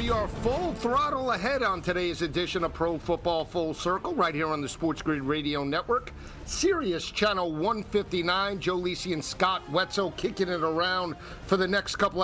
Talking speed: 175 wpm